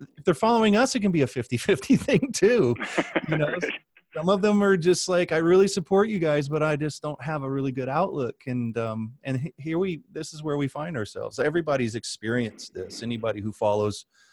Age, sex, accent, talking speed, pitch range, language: 30-49, male, American, 210 wpm, 110-155 Hz, English